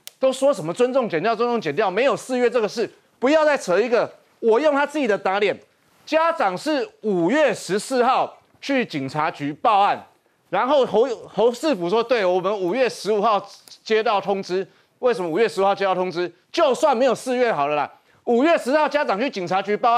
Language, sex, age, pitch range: Chinese, male, 30-49, 200-285 Hz